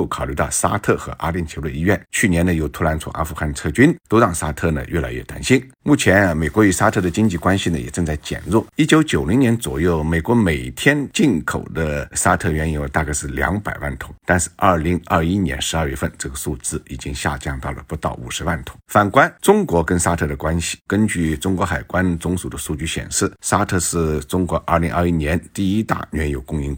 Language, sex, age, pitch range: Chinese, male, 50-69, 75-95 Hz